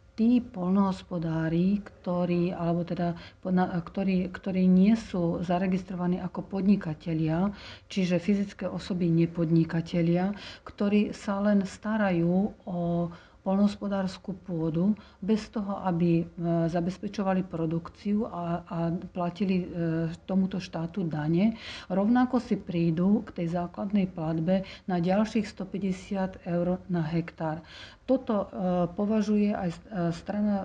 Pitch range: 175-200 Hz